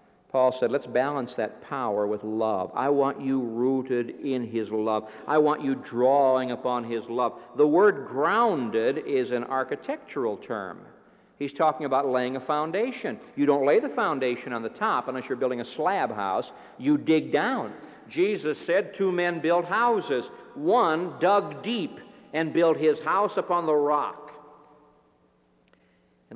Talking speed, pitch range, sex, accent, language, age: 155 wpm, 110-150 Hz, male, American, English, 60-79